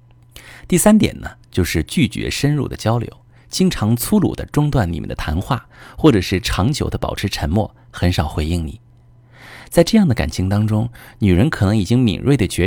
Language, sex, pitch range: Chinese, male, 90-120 Hz